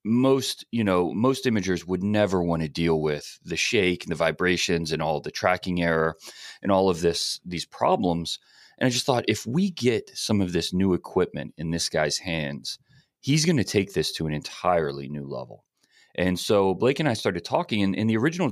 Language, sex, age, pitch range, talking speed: English, male, 30-49, 85-115 Hz, 205 wpm